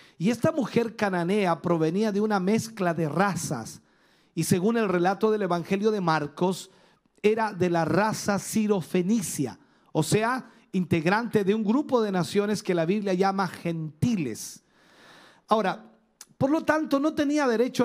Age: 50-69